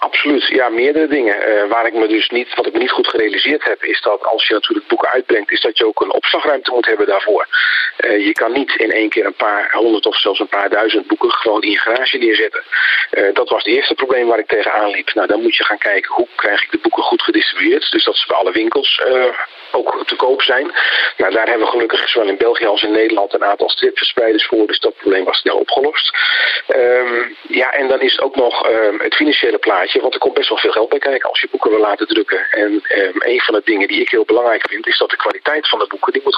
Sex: male